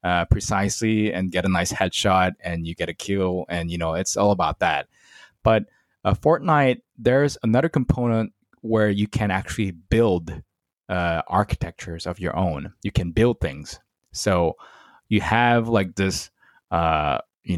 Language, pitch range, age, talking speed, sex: English, 90-110 Hz, 20-39, 155 wpm, male